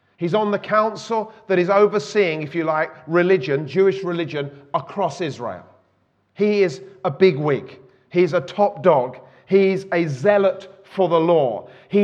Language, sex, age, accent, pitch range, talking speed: English, male, 40-59, British, 150-195 Hz, 150 wpm